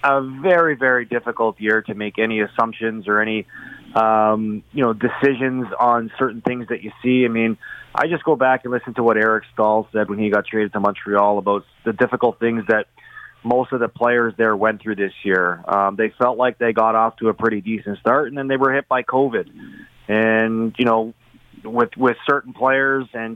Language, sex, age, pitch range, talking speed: English, male, 30-49, 110-130 Hz, 210 wpm